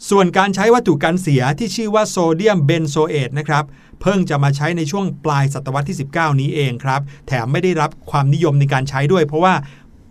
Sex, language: male, Thai